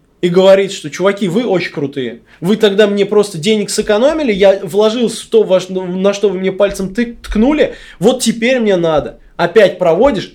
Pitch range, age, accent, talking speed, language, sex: 170-225 Hz, 20-39, native, 170 wpm, Russian, male